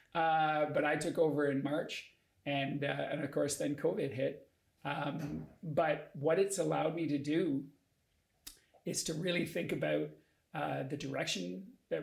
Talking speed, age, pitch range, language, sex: 160 wpm, 40-59, 145-160 Hz, English, male